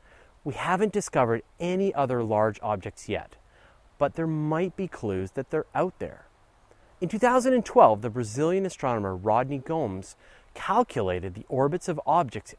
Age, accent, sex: 30-49, American, male